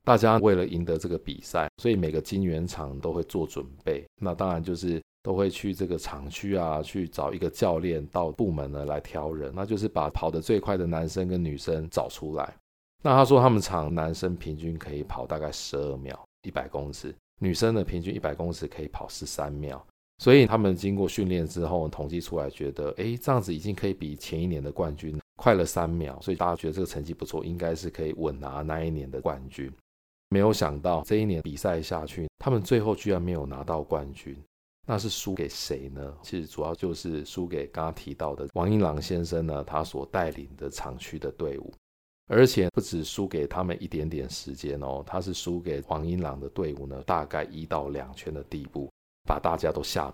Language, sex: Chinese, male